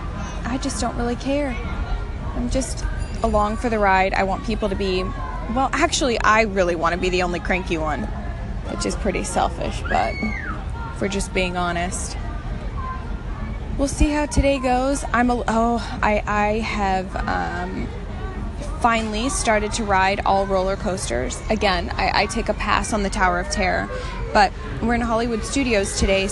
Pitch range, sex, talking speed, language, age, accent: 185-230 Hz, female, 165 wpm, English, 20-39, American